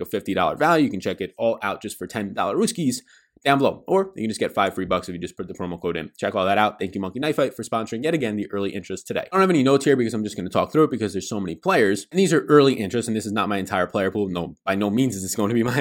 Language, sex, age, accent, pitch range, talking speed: English, male, 20-39, American, 95-125 Hz, 340 wpm